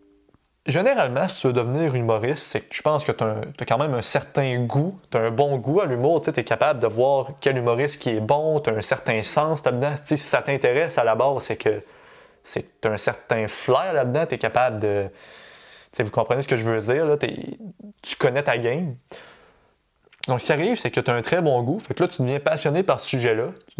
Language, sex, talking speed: French, male, 240 wpm